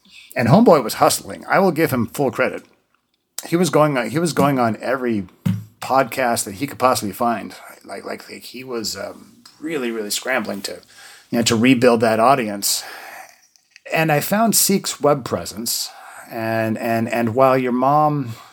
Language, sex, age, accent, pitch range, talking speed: English, male, 30-49, American, 100-130 Hz, 170 wpm